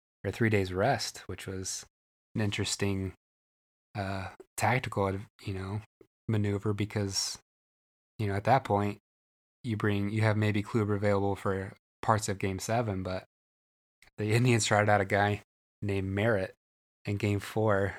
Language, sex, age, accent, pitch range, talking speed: English, male, 20-39, American, 95-105 Hz, 145 wpm